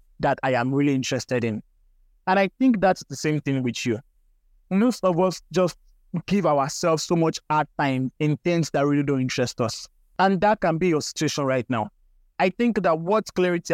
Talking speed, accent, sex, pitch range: 195 wpm, Nigerian, male, 130-170 Hz